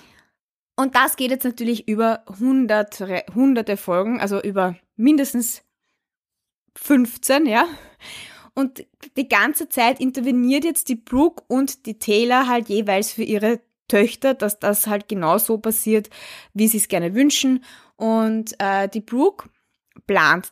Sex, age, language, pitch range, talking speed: female, 20-39, German, 215-265 Hz, 135 wpm